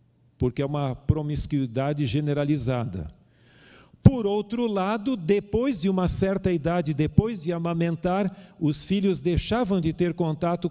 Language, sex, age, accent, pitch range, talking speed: Portuguese, male, 50-69, Brazilian, 140-180 Hz, 125 wpm